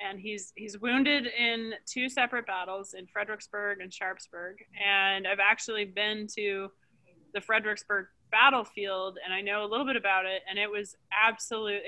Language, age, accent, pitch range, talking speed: English, 20-39, American, 180-210 Hz, 160 wpm